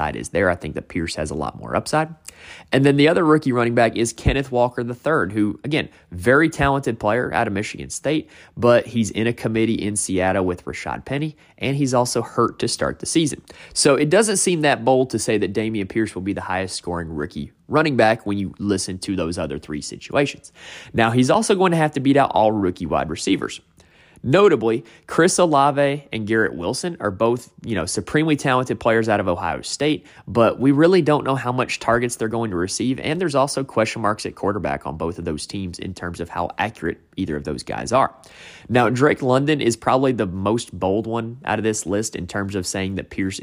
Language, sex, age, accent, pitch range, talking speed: English, male, 30-49, American, 95-130 Hz, 220 wpm